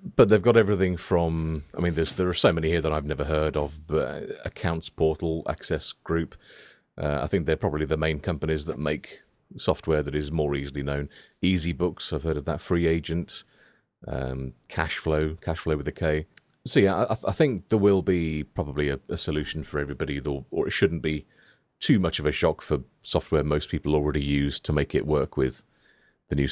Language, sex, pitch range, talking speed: English, male, 75-90 Hz, 195 wpm